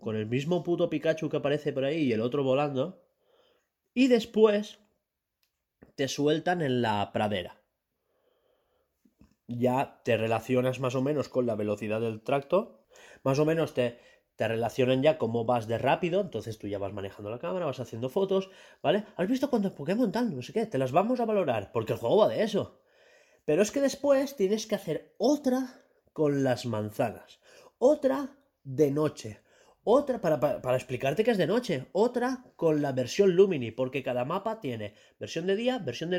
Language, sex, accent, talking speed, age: Spanish, male, Spanish, 180 wpm, 30-49